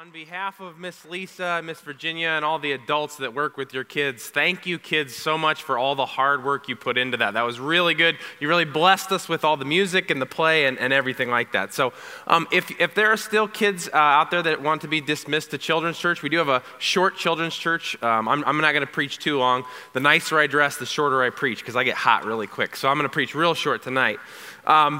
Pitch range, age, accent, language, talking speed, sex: 155-195 Hz, 20-39, American, English, 260 wpm, male